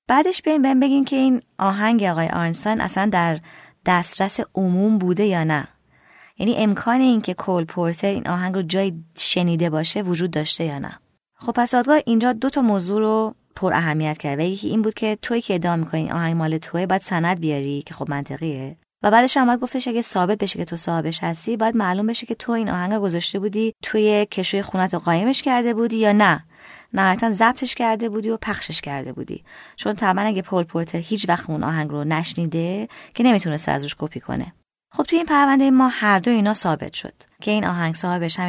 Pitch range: 170-230 Hz